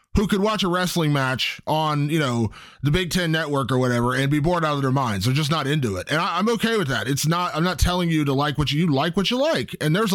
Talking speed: 290 wpm